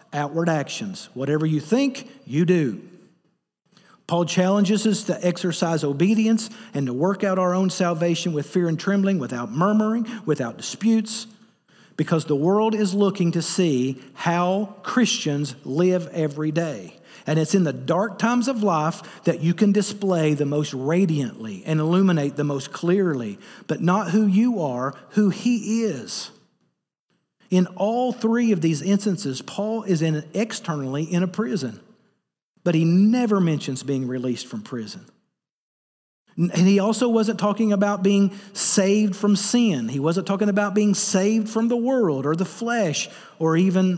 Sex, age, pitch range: male, 50-69, 155-210 Hz